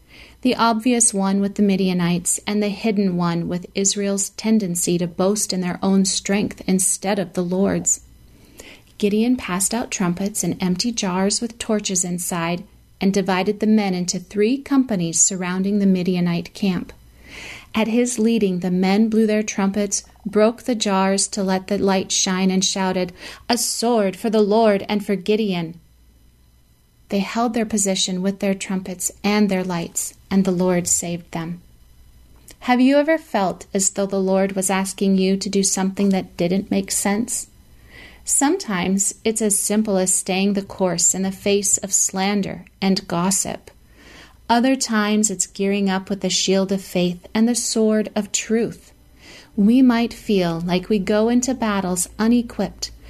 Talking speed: 160 wpm